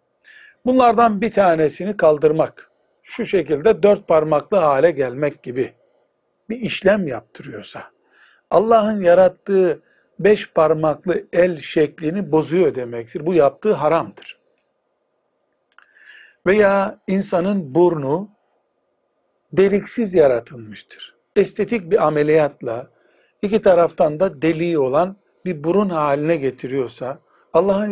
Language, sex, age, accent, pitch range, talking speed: Turkish, male, 60-79, native, 155-205 Hz, 90 wpm